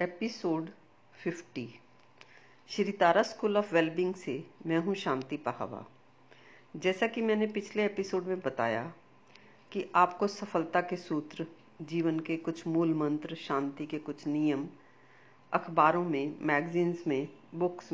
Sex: female